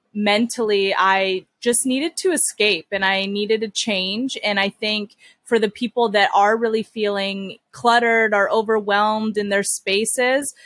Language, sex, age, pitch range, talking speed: English, female, 20-39, 200-235 Hz, 150 wpm